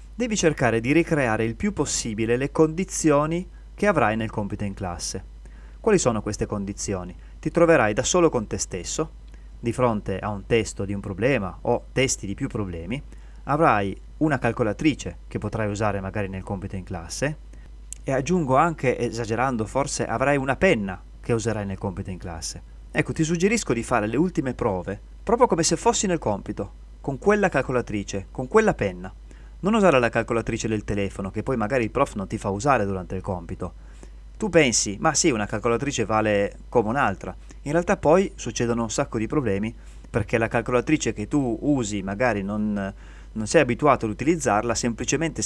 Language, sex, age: Italian, male, 30-49